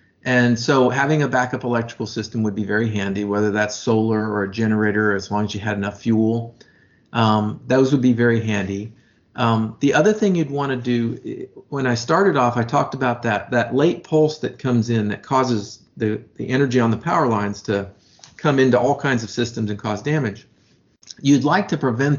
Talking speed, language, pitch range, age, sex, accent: 205 wpm, English, 105-130 Hz, 50-69, male, American